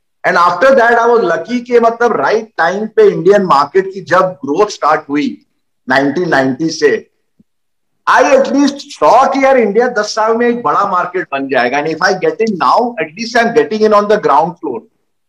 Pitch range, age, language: 160-230 Hz, 50-69, English